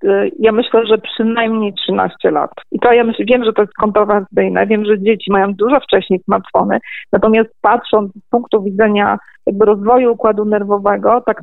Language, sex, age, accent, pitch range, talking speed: Polish, female, 40-59, native, 200-225 Hz, 170 wpm